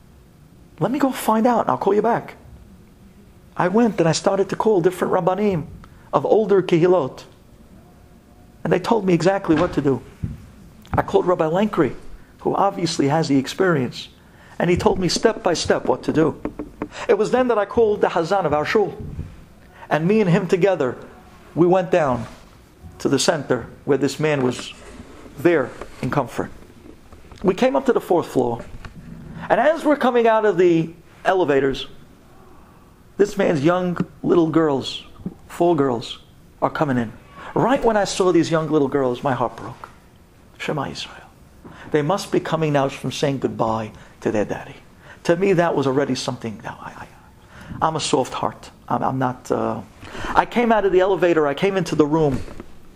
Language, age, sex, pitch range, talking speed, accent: English, 50-69, male, 135-195 Hz, 175 wpm, American